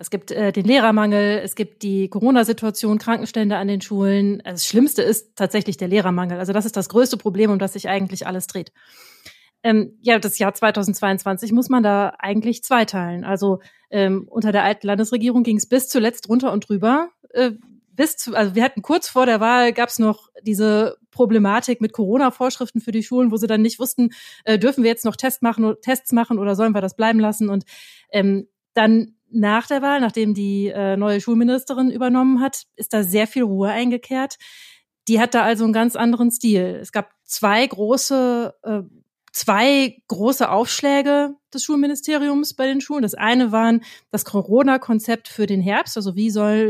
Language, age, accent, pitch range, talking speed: German, 30-49, German, 205-245 Hz, 190 wpm